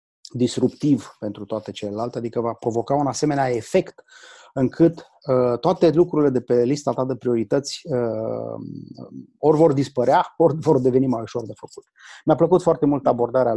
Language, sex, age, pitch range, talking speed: English, male, 30-49, 125-150 Hz, 165 wpm